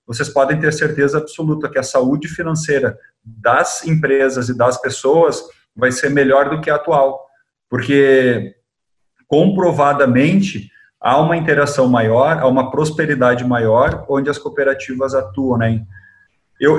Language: Portuguese